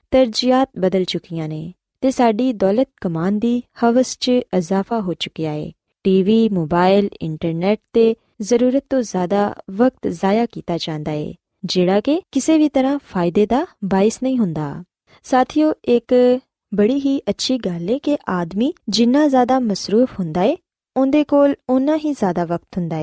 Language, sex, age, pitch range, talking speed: Punjabi, female, 20-39, 190-265 Hz, 135 wpm